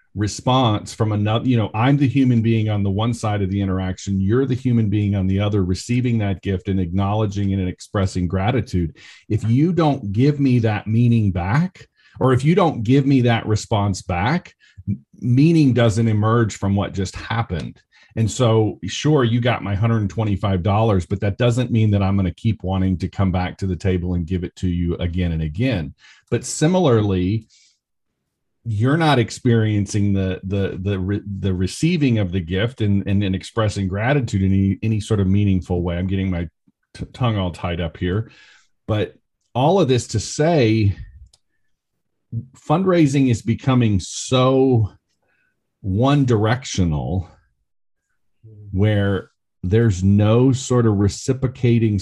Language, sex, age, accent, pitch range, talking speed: English, male, 40-59, American, 95-120 Hz, 160 wpm